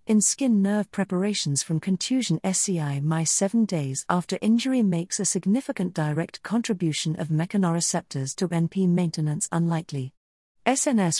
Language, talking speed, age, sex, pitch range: English, 130 wpm, 50-69, female, 160-210 Hz